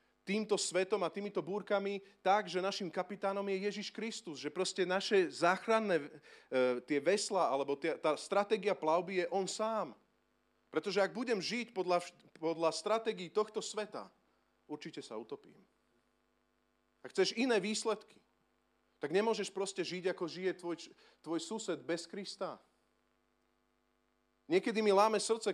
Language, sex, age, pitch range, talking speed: Slovak, male, 40-59, 160-210 Hz, 135 wpm